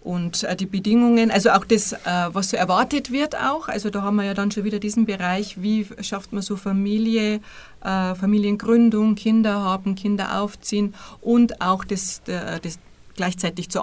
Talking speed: 165 wpm